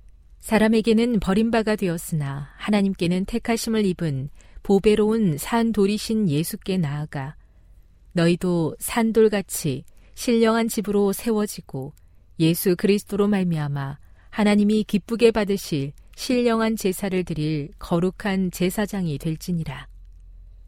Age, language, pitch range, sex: 40-59, Korean, 155-210 Hz, female